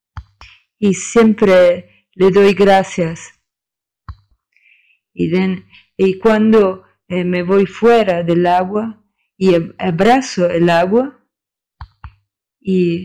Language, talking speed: English, 85 wpm